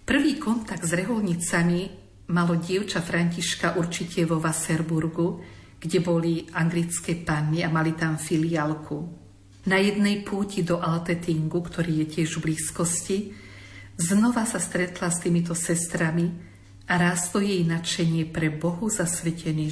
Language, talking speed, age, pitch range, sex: Slovak, 125 wpm, 50-69, 160-180 Hz, female